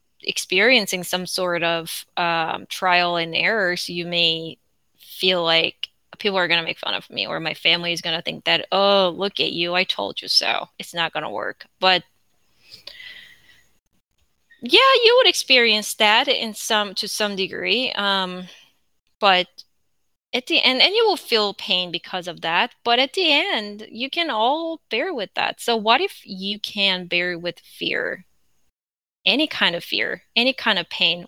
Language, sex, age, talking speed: English, female, 20-39, 175 wpm